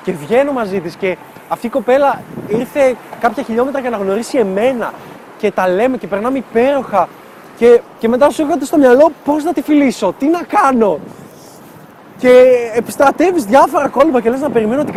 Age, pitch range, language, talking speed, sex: 20-39, 200-255 Hz, Greek, 175 wpm, male